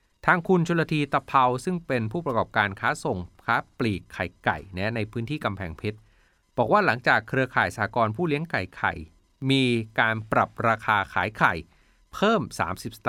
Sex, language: male, Thai